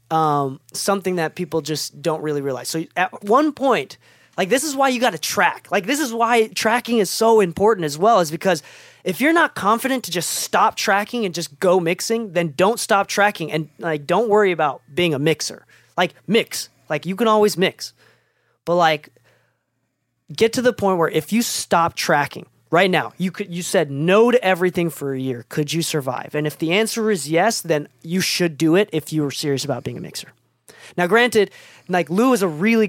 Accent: American